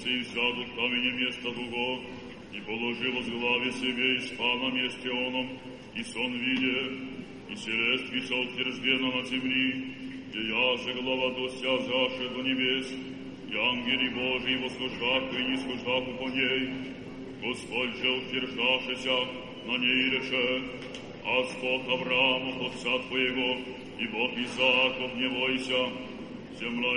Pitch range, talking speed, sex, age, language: 125-130 Hz, 125 wpm, male, 60-79, Polish